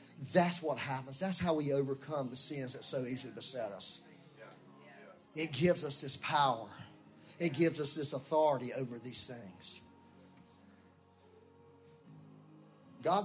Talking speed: 125 wpm